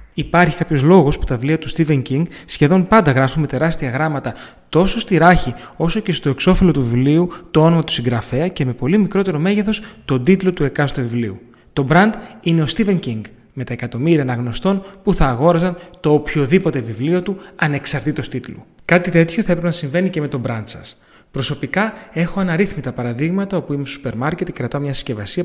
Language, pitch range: Greek, 135-180 Hz